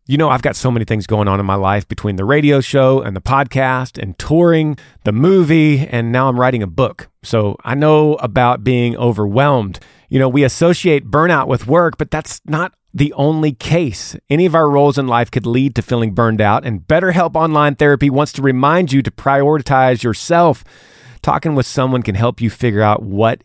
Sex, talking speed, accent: male, 205 wpm, American